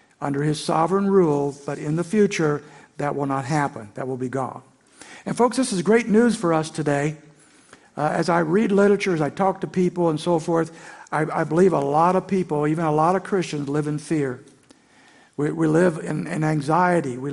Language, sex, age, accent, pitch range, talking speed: English, male, 60-79, American, 150-185 Hz, 210 wpm